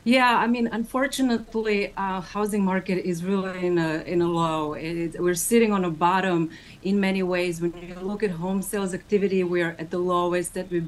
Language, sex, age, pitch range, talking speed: English, female, 30-49, 175-215 Hz, 210 wpm